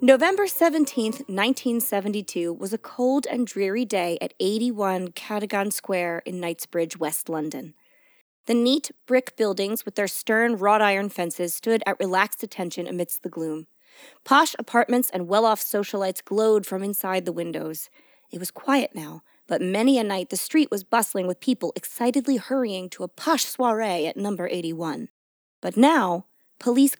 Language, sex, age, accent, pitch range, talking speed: English, female, 20-39, American, 190-240 Hz, 155 wpm